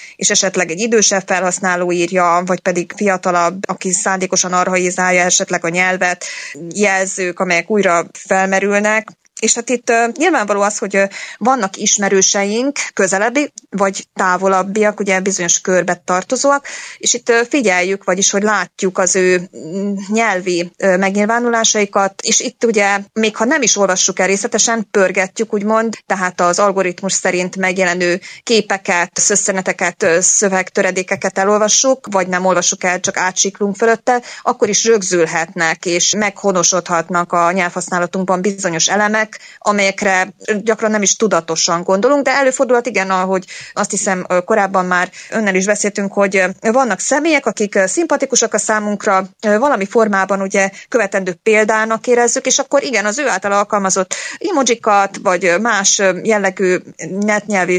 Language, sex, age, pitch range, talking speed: Hungarian, female, 20-39, 185-220 Hz, 130 wpm